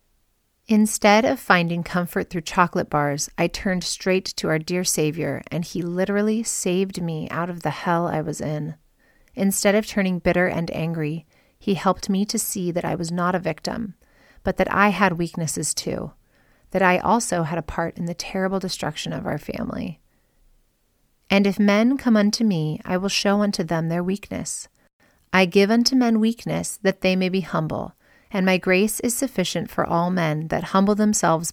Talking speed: 185 wpm